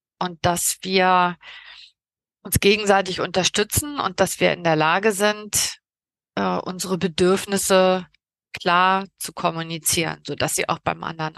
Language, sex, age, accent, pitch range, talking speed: German, female, 30-49, German, 175-205 Hz, 125 wpm